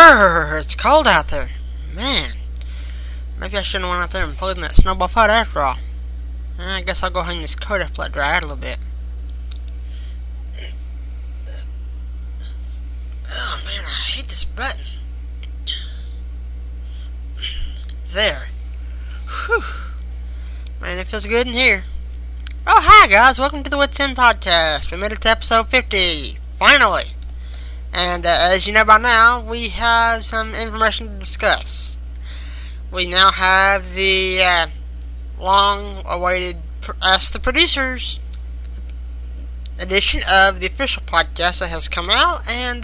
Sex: male